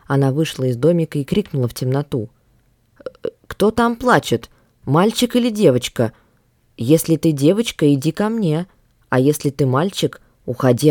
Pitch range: 125-165 Hz